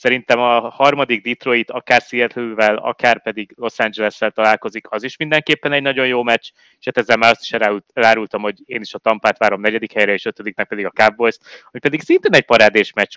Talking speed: 195 wpm